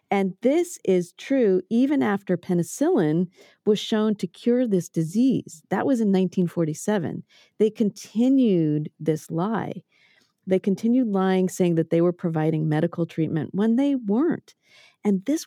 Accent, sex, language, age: American, female, English, 40-59